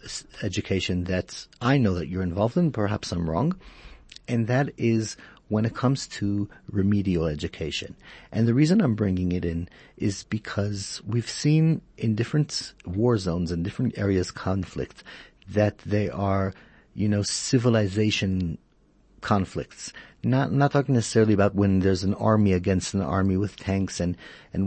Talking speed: 150 wpm